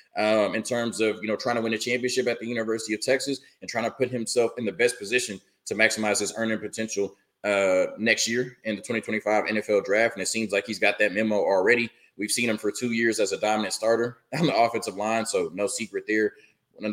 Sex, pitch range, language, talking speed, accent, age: male, 105-115 Hz, English, 240 wpm, American, 20-39